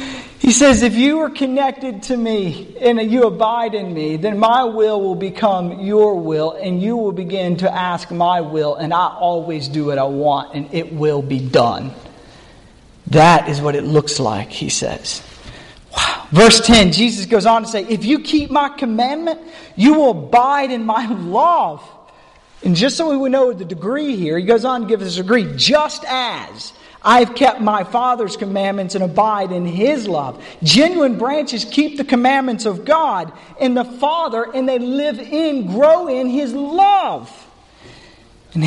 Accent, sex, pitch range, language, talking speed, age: American, male, 160-250 Hz, English, 180 wpm, 40-59